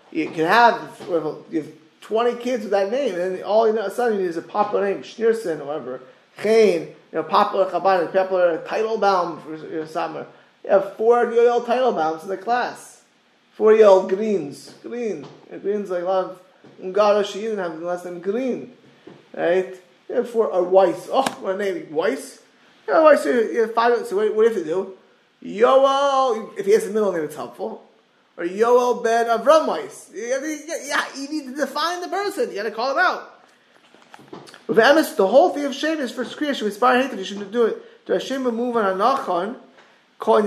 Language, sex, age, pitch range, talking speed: English, male, 20-39, 175-245 Hz, 195 wpm